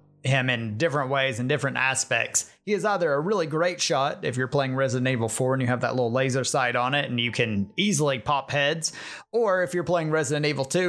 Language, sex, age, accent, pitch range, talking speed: English, male, 30-49, American, 130-175 Hz, 230 wpm